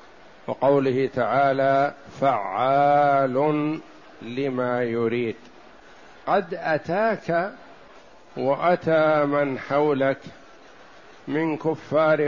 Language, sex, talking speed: Arabic, male, 60 wpm